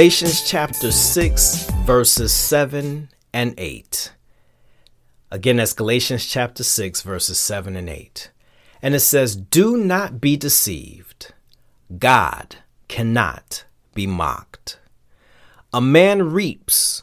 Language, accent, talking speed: English, American, 105 wpm